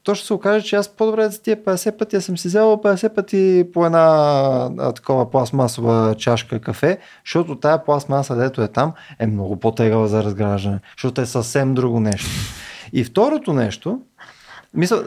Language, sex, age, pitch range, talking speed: Bulgarian, male, 20-39, 135-205 Hz, 170 wpm